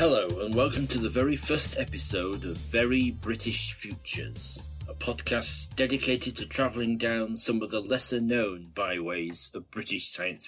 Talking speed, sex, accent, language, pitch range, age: 150 wpm, male, British, English, 95-115 Hz, 40-59